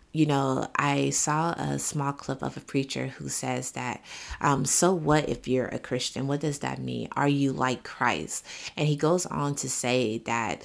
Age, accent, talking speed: 30-49, American, 195 wpm